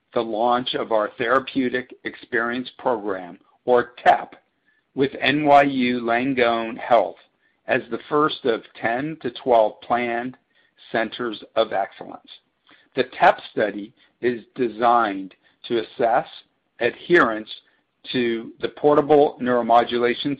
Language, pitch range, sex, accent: English, 120-145 Hz, male, American